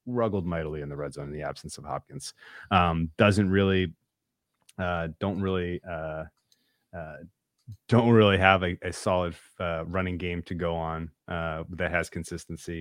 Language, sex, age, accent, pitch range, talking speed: English, male, 30-49, American, 80-100 Hz, 165 wpm